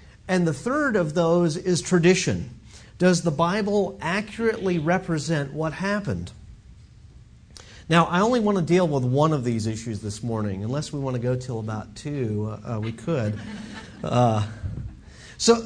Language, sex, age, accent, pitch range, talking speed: English, male, 40-59, American, 125-180 Hz, 155 wpm